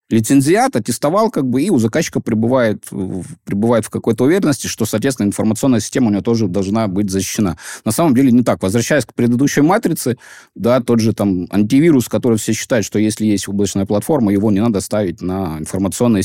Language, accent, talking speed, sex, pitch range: Russian, native, 185 wpm, male, 100-120 Hz